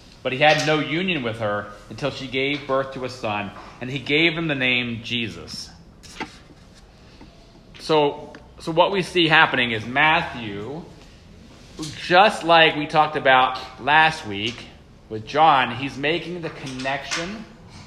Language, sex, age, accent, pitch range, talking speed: English, male, 30-49, American, 125-155 Hz, 140 wpm